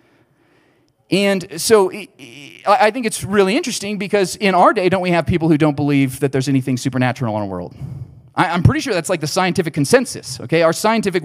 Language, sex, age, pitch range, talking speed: English, male, 30-49, 135-185 Hz, 190 wpm